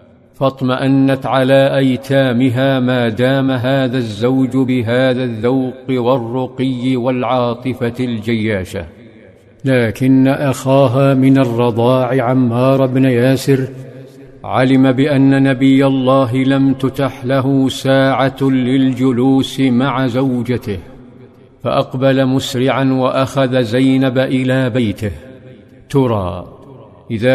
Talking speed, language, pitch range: 85 wpm, Arabic, 125-135 Hz